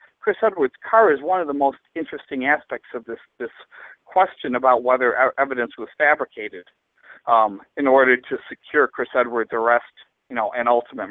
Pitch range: 130-175 Hz